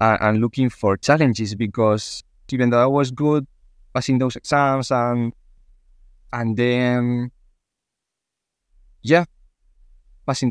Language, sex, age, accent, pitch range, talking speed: English, male, 20-39, Spanish, 105-130 Hz, 105 wpm